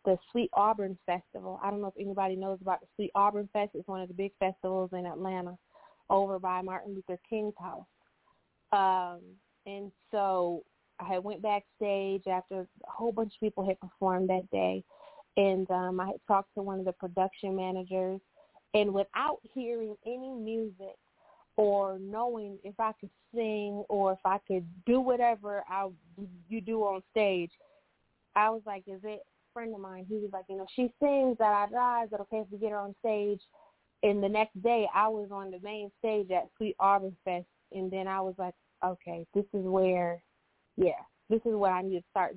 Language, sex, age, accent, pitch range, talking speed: English, female, 20-39, American, 185-210 Hz, 190 wpm